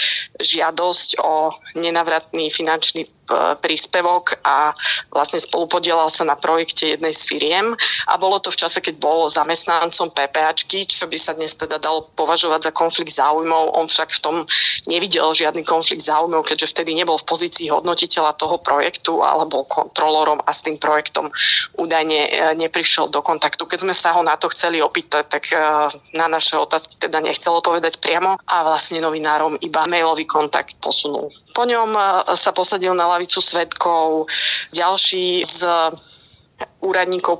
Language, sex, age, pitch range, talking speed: Slovak, female, 20-39, 155-180 Hz, 150 wpm